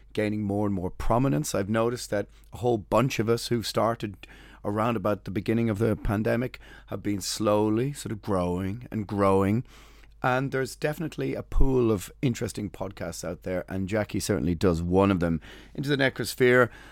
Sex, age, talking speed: male, 30-49, 175 wpm